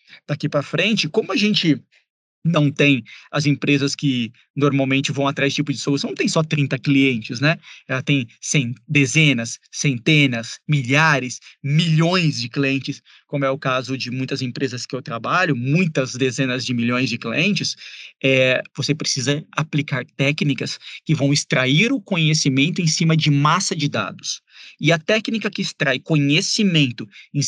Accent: Brazilian